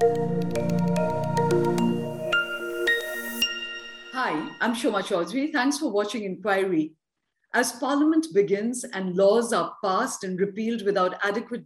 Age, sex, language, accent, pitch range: 50-69, female, English, Indian, 185-245 Hz